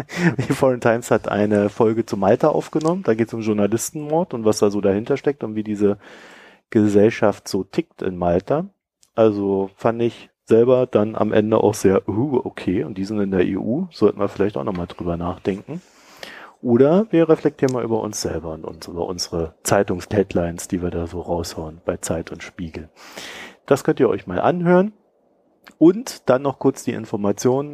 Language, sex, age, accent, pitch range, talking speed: German, male, 40-59, German, 100-130 Hz, 185 wpm